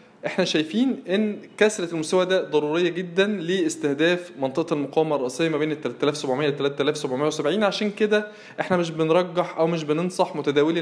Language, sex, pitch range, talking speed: Arabic, male, 150-180 Hz, 145 wpm